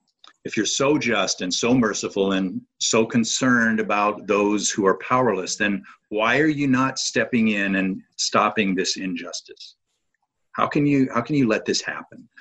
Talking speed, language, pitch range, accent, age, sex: 170 wpm, English, 100-130 Hz, American, 50-69, male